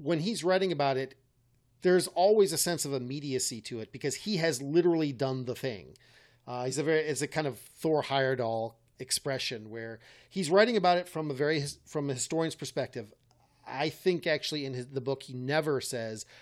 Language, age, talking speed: English, 40-59, 195 wpm